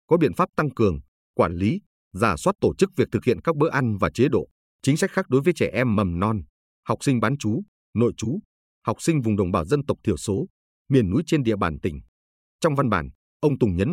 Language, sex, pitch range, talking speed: Vietnamese, male, 95-140 Hz, 240 wpm